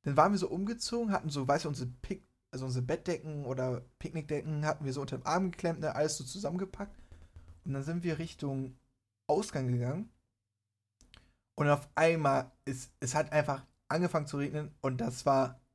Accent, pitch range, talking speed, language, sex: German, 130-165 Hz, 180 wpm, German, male